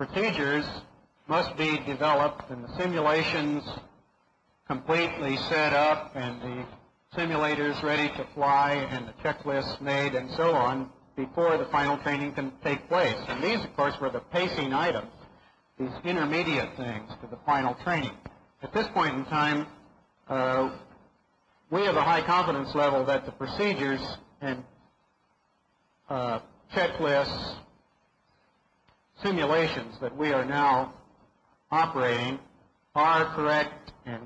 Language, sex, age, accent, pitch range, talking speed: English, male, 50-69, American, 130-150 Hz, 125 wpm